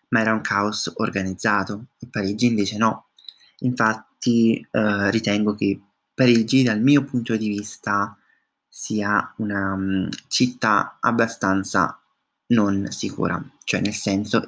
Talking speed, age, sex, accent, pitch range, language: 115 wpm, 20-39, male, native, 100-120 Hz, Italian